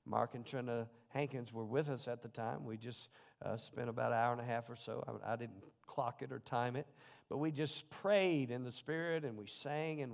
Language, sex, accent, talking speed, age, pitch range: English, male, American, 245 wpm, 50-69, 130-165 Hz